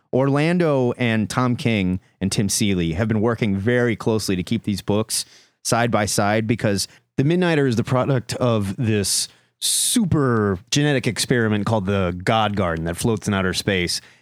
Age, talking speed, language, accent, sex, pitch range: 30-49, 165 wpm, English, American, male, 95-120 Hz